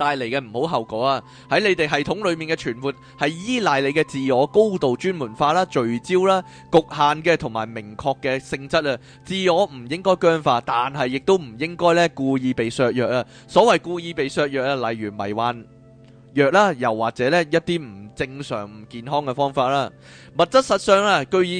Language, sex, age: Chinese, male, 20-39